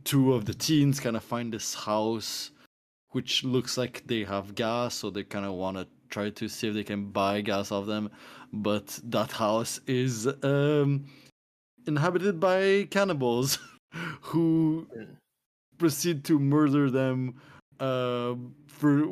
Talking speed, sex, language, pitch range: 145 wpm, male, English, 105-140 Hz